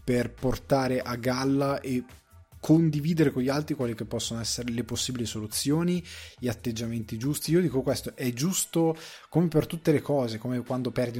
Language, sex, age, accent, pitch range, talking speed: Italian, male, 20-39, native, 115-150 Hz, 170 wpm